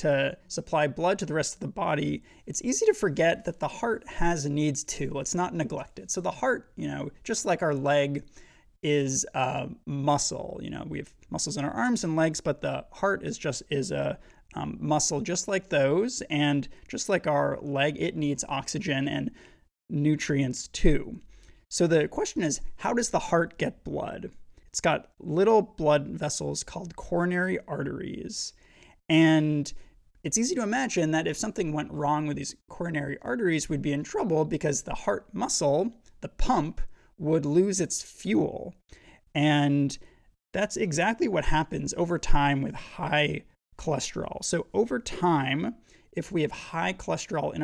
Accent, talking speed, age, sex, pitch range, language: American, 165 wpm, 20-39, male, 145-175 Hz, English